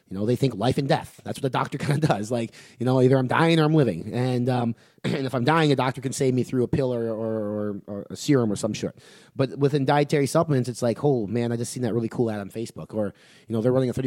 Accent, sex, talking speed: American, male, 300 wpm